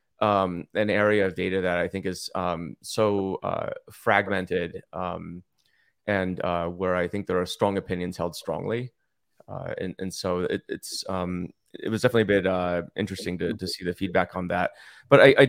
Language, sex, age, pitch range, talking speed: English, male, 30-49, 90-105 Hz, 180 wpm